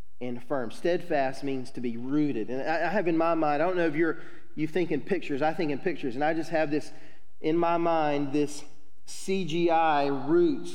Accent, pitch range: American, 135-175 Hz